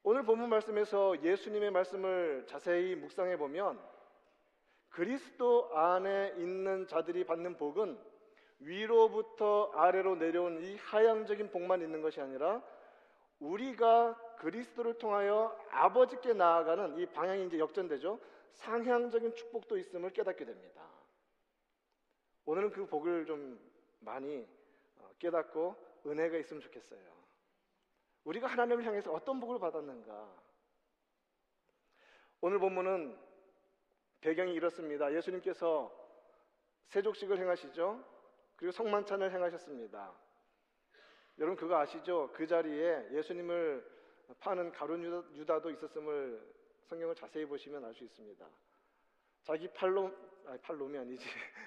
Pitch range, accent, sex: 165-230 Hz, native, male